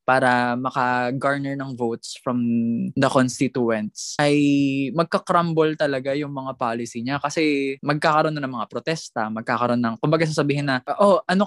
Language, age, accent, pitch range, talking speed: Filipino, 20-39, native, 125-165 Hz, 140 wpm